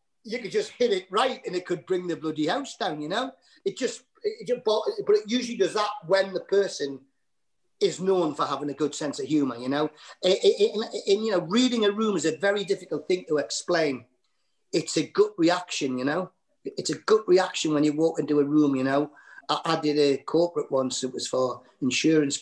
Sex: male